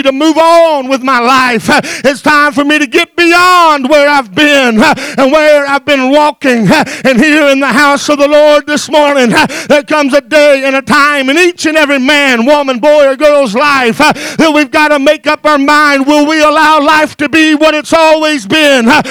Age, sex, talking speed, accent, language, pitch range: 50-69, male, 205 wpm, American, English, 295-345 Hz